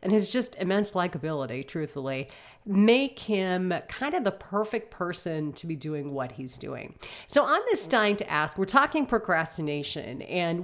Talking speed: 165 wpm